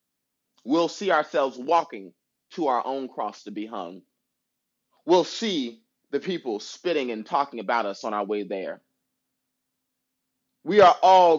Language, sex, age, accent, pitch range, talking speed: English, male, 30-49, American, 120-160 Hz, 140 wpm